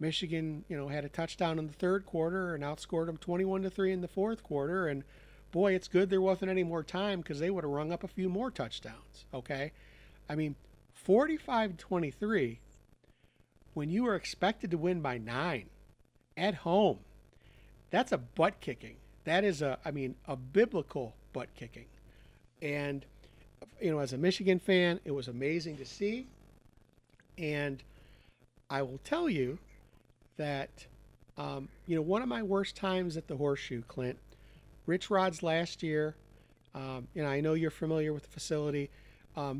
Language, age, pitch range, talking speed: English, 50-69, 140-180 Hz, 165 wpm